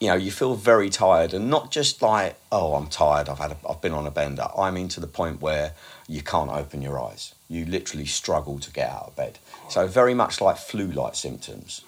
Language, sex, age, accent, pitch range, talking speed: English, male, 50-69, British, 75-95 Hz, 230 wpm